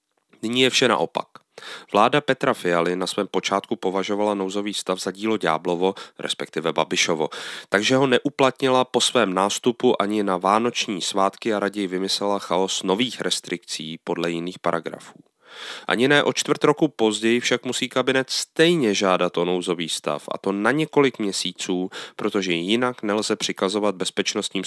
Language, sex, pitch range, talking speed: Czech, male, 90-120 Hz, 150 wpm